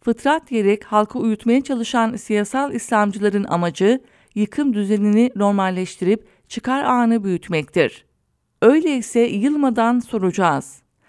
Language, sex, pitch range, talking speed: English, female, 195-250 Hz, 90 wpm